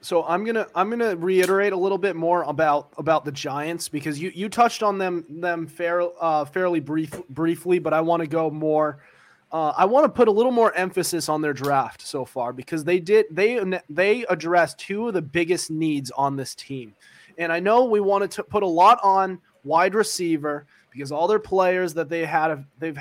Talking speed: 210 wpm